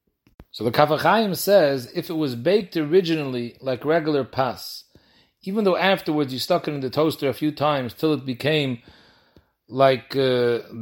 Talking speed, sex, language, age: 160 wpm, male, English, 40-59